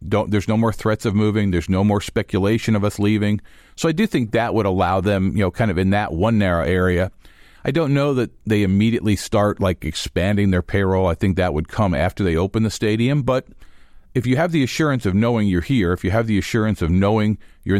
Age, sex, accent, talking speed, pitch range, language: 50-69, male, American, 235 wpm, 95-115 Hz, English